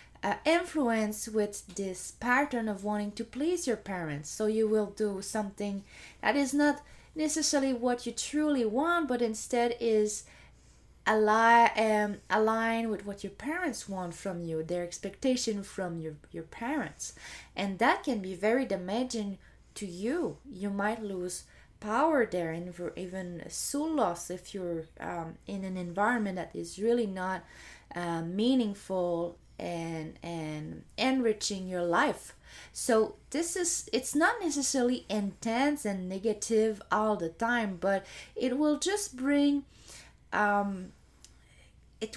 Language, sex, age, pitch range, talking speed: English, female, 20-39, 190-245 Hz, 140 wpm